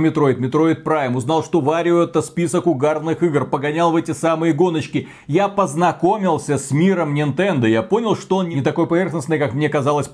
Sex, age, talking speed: male, 40-59, 180 wpm